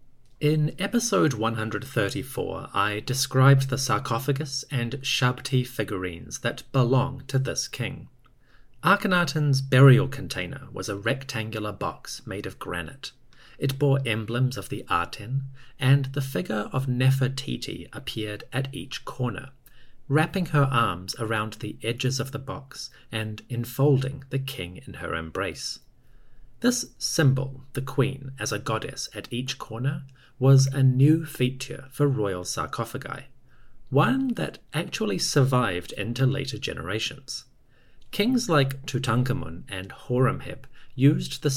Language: English